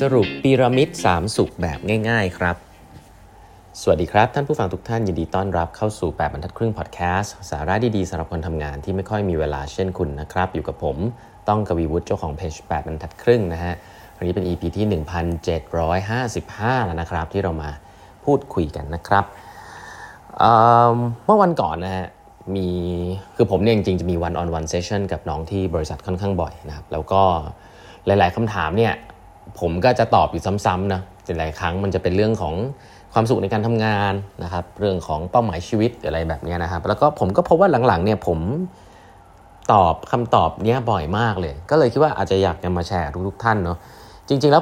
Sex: male